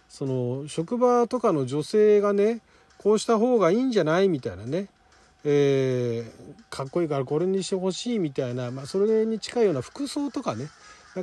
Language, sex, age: Japanese, male, 40-59